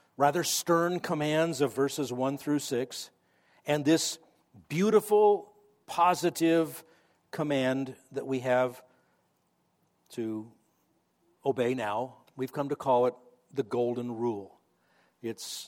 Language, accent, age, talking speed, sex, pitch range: English, American, 50-69, 105 wpm, male, 140-195 Hz